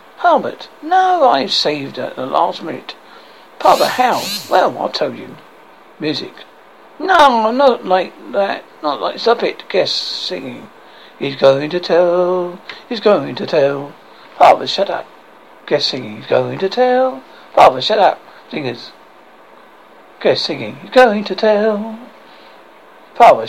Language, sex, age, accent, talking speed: English, male, 60-79, British, 140 wpm